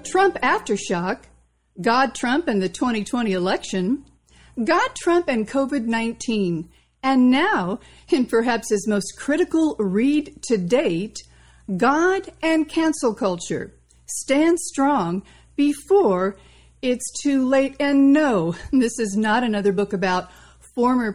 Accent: American